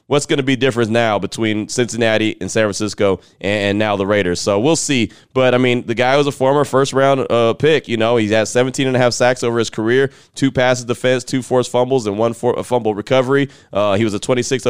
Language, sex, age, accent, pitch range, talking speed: English, male, 20-39, American, 105-125 Hz, 235 wpm